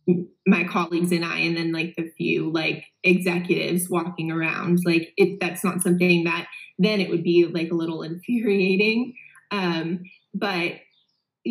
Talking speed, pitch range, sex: 150 wpm, 170-195 Hz, female